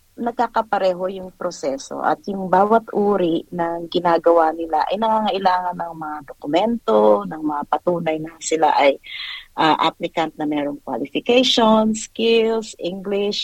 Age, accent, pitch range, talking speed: 40-59, native, 160-220 Hz, 125 wpm